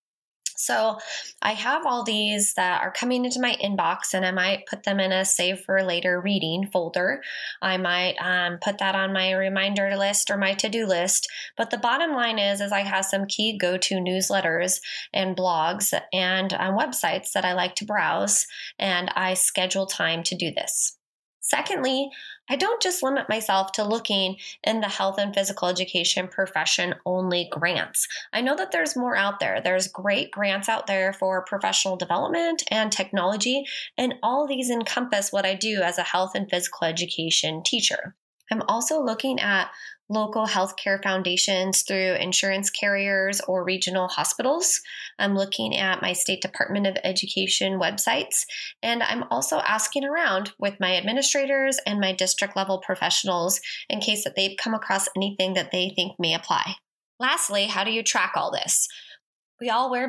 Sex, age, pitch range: female, 20-39, 185-220 Hz